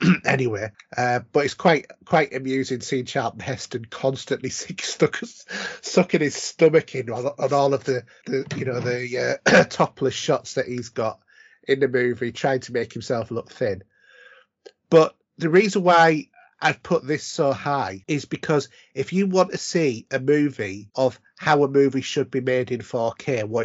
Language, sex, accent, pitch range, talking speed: English, male, British, 115-140 Hz, 175 wpm